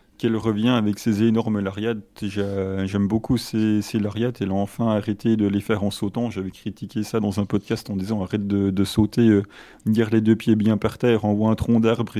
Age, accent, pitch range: 30-49, French, 100-115 Hz